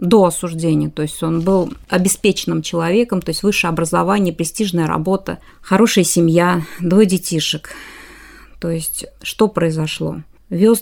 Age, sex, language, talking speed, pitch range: 30-49, female, Russian, 130 wpm, 165-195 Hz